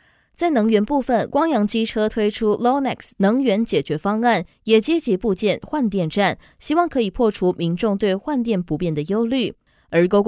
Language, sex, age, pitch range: Chinese, female, 20-39, 175-245 Hz